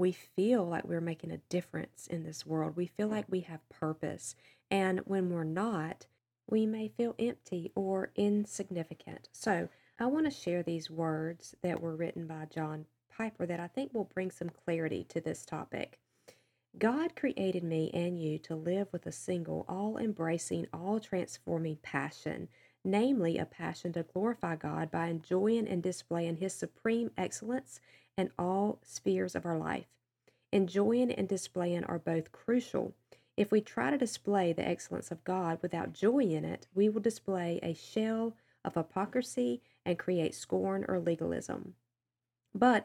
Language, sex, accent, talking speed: English, female, American, 160 wpm